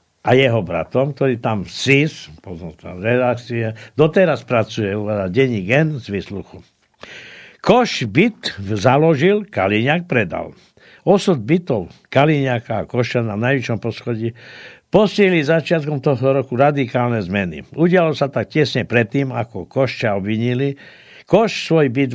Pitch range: 115-150 Hz